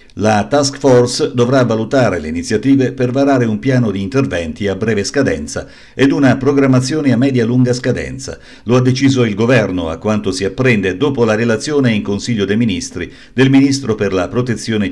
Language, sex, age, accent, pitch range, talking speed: Italian, male, 50-69, native, 100-130 Hz, 175 wpm